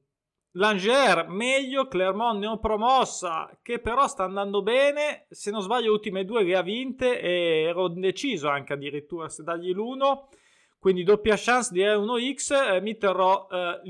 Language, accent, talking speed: Italian, native, 160 wpm